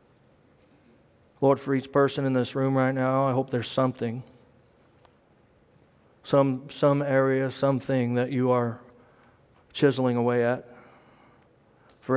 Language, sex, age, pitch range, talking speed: English, male, 40-59, 120-135 Hz, 120 wpm